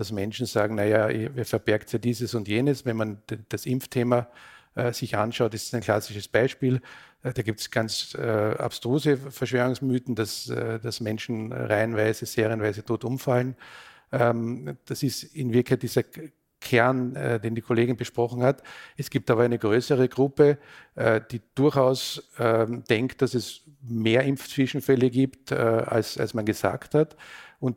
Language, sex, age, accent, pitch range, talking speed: German, male, 50-69, Austrian, 115-135 Hz, 160 wpm